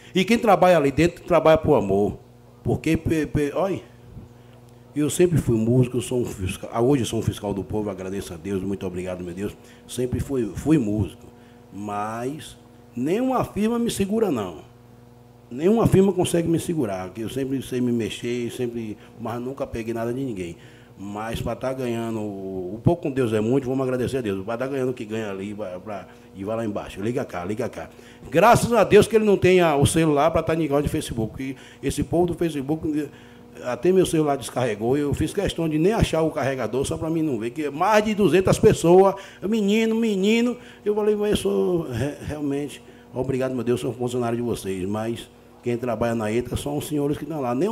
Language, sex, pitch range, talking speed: Portuguese, male, 115-155 Hz, 200 wpm